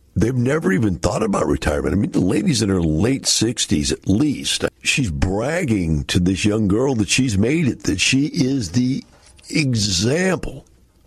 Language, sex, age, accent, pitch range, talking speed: English, male, 60-79, American, 85-125 Hz, 170 wpm